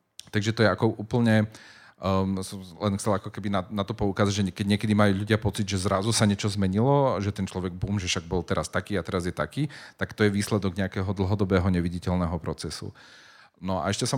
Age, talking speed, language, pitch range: 40-59, 215 wpm, Slovak, 95-110 Hz